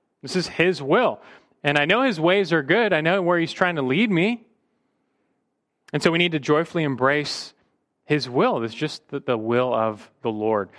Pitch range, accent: 135-200 Hz, American